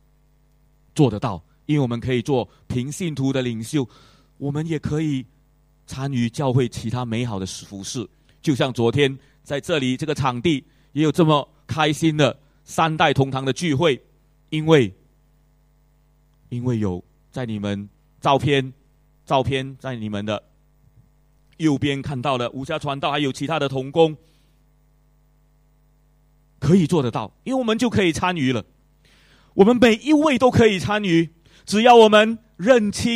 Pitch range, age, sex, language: 135-165 Hz, 30-49, male, English